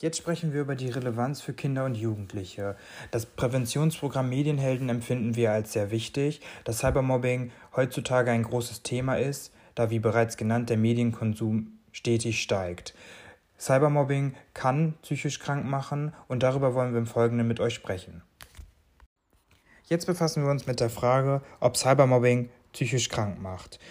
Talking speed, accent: 150 wpm, German